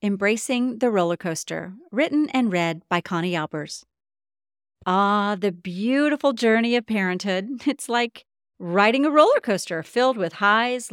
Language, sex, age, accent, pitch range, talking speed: English, female, 40-59, American, 185-280 Hz, 135 wpm